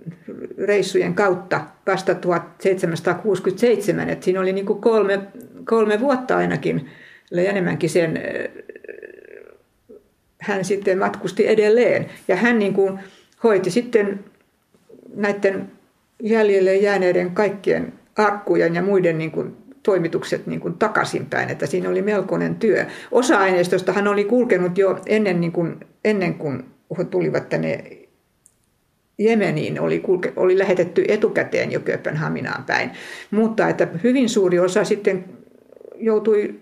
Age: 60-79